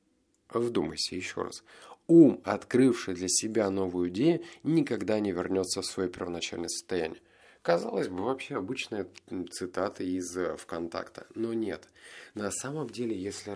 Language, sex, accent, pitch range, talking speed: Russian, male, native, 95-115 Hz, 130 wpm